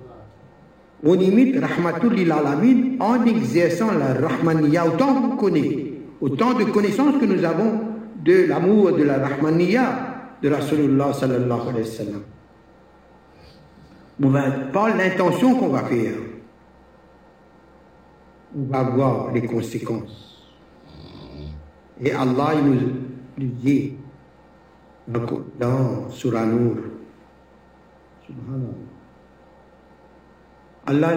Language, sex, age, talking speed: French, male, 60-79, 90 wpm